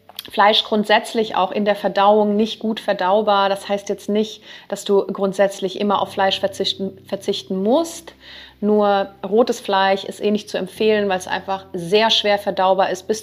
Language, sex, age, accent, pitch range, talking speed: German, female, 30-49, German, 190-210 Hz, 170 wpm